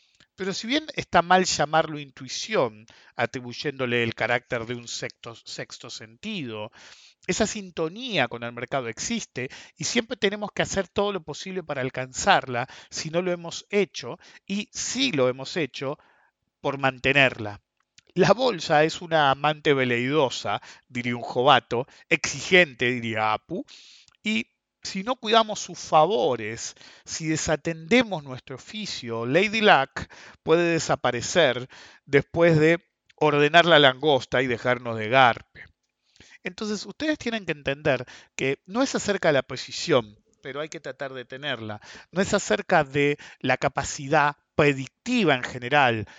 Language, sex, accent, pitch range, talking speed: English, male, Argentinian, 130-190 Hz, 135 wpm